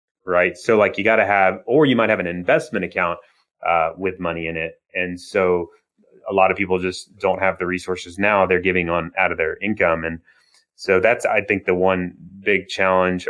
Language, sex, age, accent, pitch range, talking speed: English, male, 30-49, American, 90-105 Hz, 210 wpm